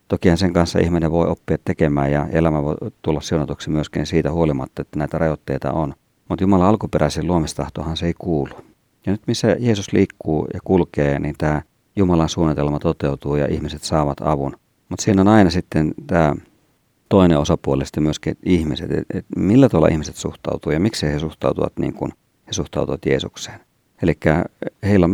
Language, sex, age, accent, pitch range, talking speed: Finnish, male, 50-69, native, 75-90 Hz, 160 wpm